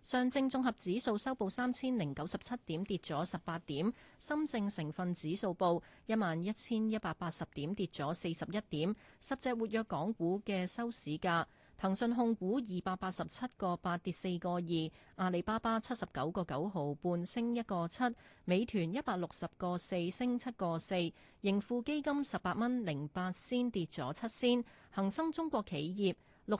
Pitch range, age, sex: 170-235 Hz, 30-49, female